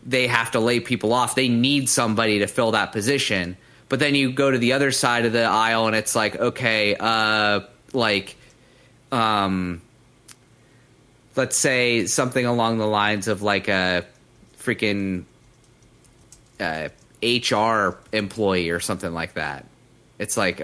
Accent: American